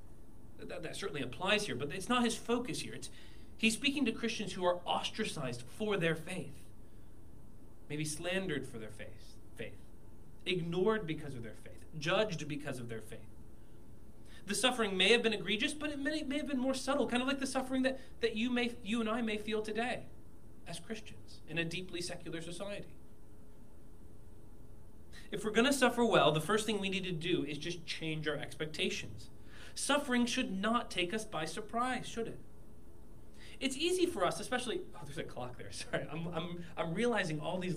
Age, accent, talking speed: 30-49, American, 190 wpm